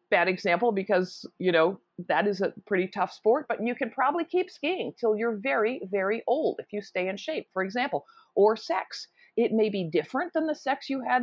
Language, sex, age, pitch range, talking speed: English, female, 50-69, 175-245 Hz, 215 wpm